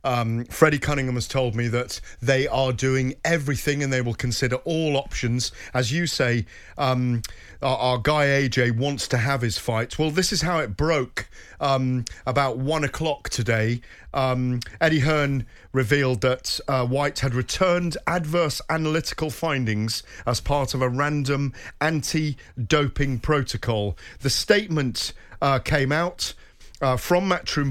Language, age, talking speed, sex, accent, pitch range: English, 40-59, 145 wpm, male, British, 125-155 Hz